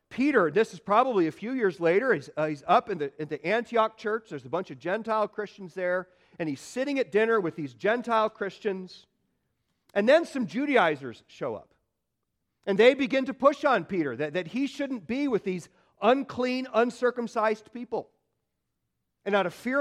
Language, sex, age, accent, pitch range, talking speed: English, male, 40-59, American, 185-250 Hz, 180 wpm